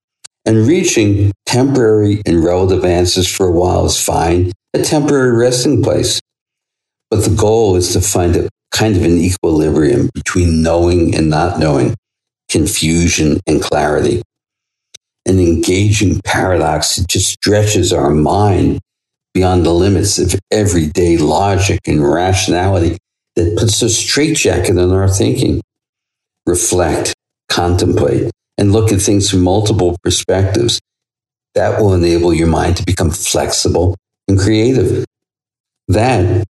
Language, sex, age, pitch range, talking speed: English, male, 60-79, 90-110 Hz, 125 wpm